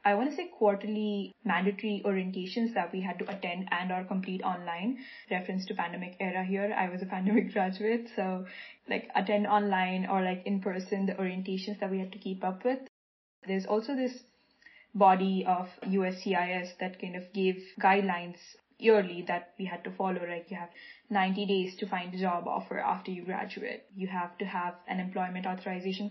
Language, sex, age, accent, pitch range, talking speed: English, female, 10-29, Indian, 185-210 Hz, 185 wpm